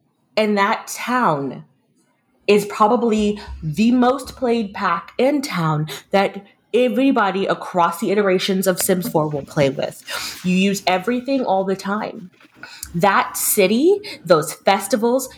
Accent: American